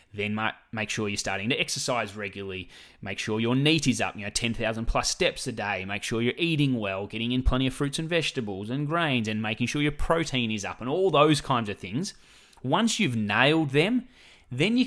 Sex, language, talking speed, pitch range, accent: male, English, 220 wpm, 105-140 Hz, Australian